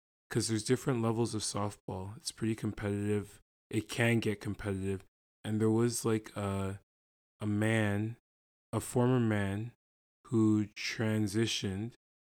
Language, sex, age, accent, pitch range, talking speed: English, male, 20-39, American, 100-115 Hz, 125 wpm